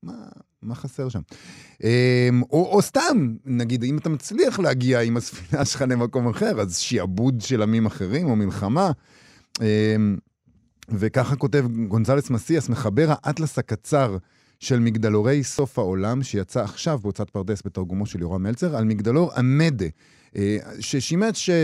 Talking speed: 130 wpm